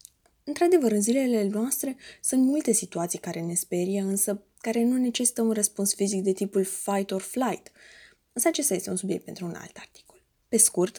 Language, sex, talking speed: Romanian, female, 180 wpm